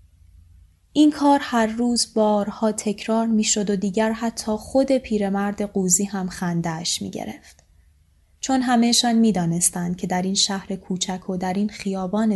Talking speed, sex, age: 155 wpm, female, 20-39